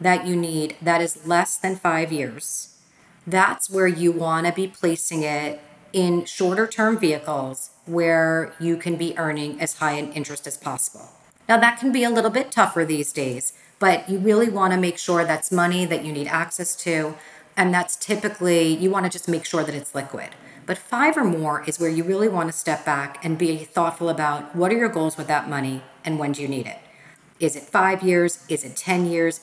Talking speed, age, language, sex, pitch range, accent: 215 wpm, 40-59, English, female, 150-185 Hz, American